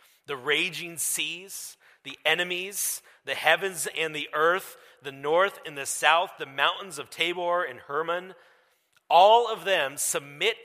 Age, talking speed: 40-59, 140 wpm